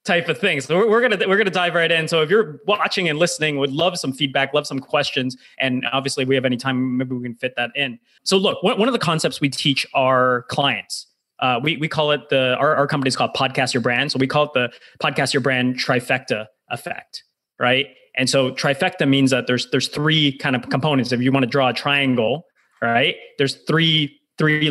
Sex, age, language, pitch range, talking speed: male, 20-39, English, 135-175 Hz, 230 wpm